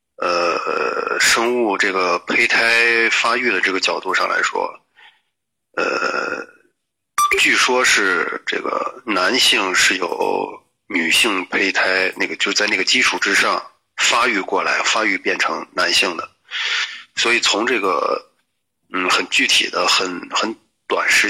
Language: Chinese